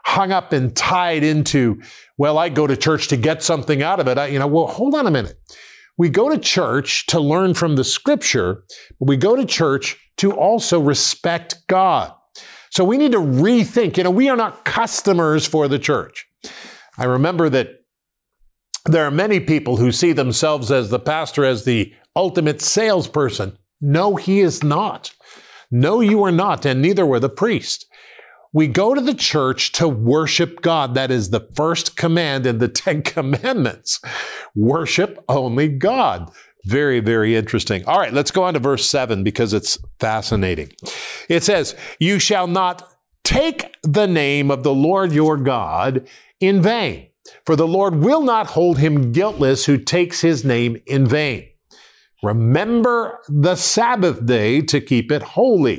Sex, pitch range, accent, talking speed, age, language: male, 135-185 Hz, American, 170 wpm, 50-69, English